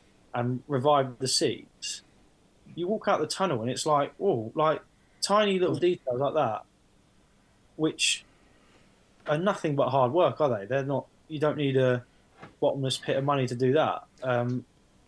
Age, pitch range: 20-39, 125-155 Hz